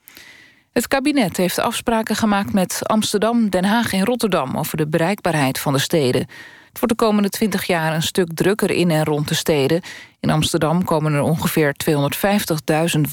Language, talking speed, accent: Dutch, 170 wpm, Dutch